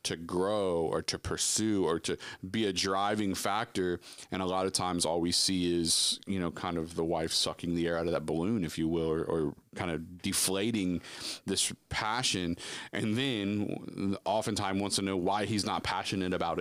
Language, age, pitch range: English, 30-49, 85-100 Hz